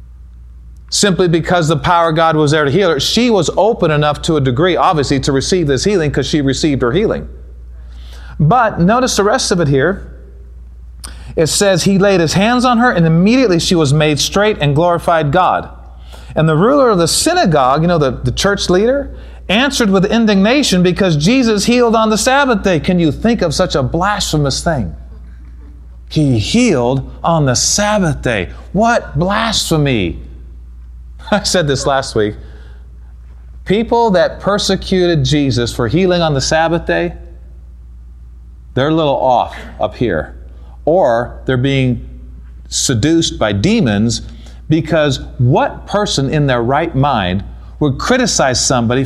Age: 40-59